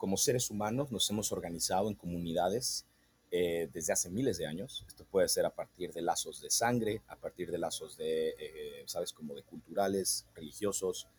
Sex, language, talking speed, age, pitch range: male, Spanish, 180 wpm, 40-59, 90-130 Hz